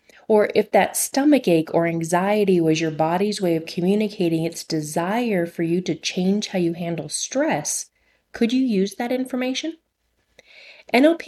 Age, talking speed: 30-49, 155 wpm